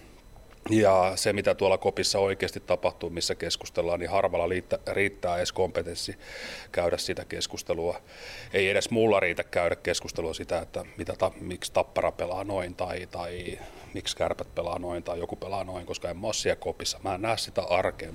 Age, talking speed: 30-49, 165 wpm